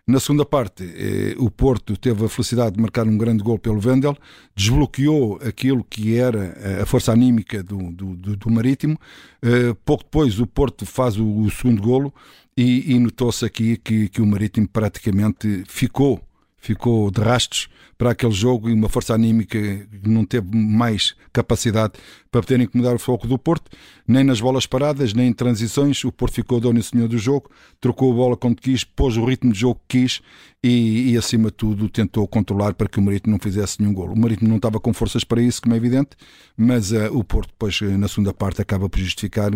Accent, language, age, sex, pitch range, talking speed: Portuguese, Portuguese, 50-69, male, 105-125 Hz, 200 wpm